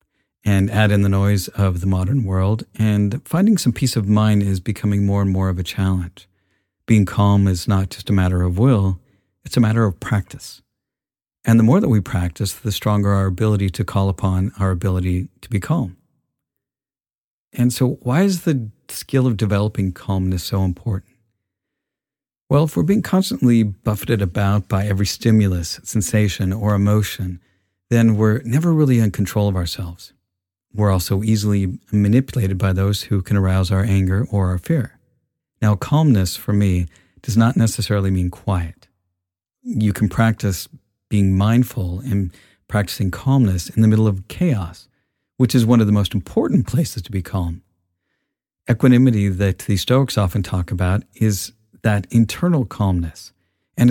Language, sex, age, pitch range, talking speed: English, male, 50-69, 95-115 Hz, 165 wpm